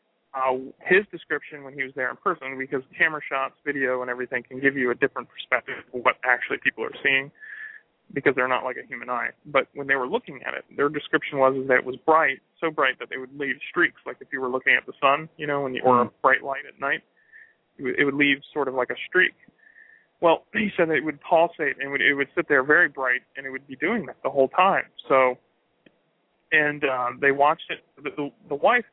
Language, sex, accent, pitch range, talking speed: English, male, American, 135-170 Hz, 245 wpm